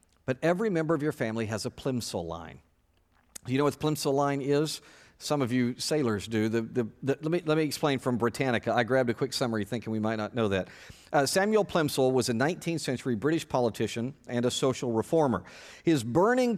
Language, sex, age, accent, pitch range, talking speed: English, male, 50-69, American, 120-155 Hz, 200 wpm